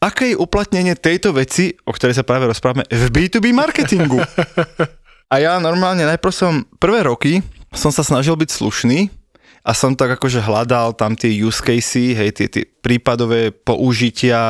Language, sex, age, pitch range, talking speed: Slovak, male, 20-39, 115-155 Hz, 160 wpm